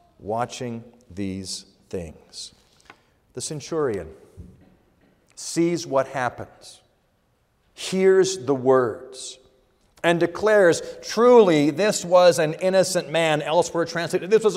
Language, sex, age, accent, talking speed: English, male, 50-69, American, 95 wpm